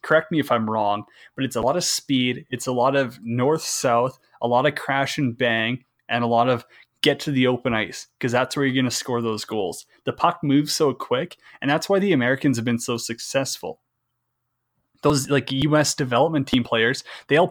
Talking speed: 215 wpm